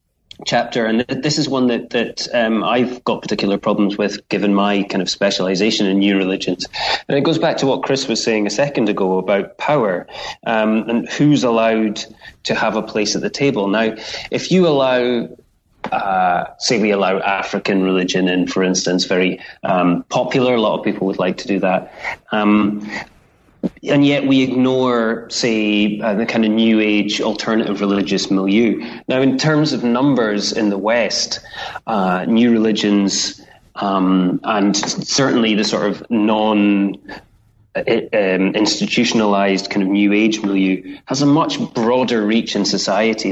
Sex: male